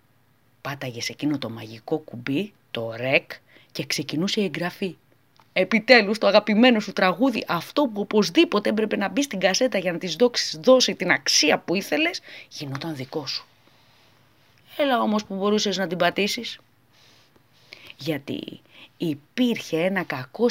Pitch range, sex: 150-250 Hz, female